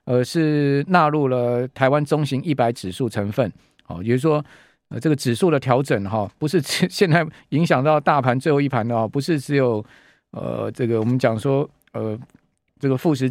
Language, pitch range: Chinese, 115-145 Hz